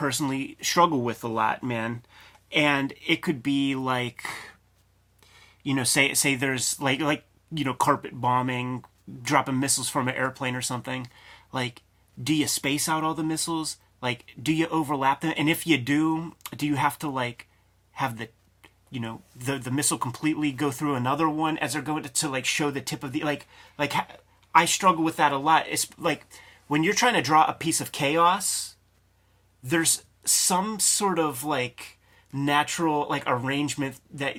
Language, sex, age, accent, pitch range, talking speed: English, male, 30-49, American, 120-155 Hz, 180 wpm